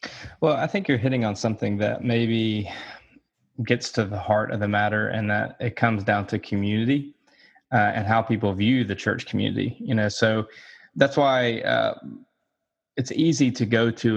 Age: 20-39